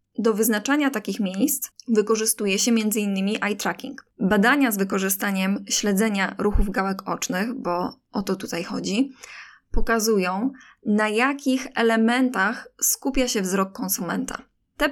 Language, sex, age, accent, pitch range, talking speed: Polish, female, 20-39, native, 200-245 Hz, 120 wpm